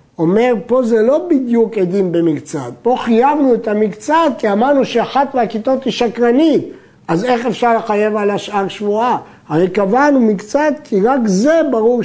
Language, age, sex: Hebrew, 60-79, male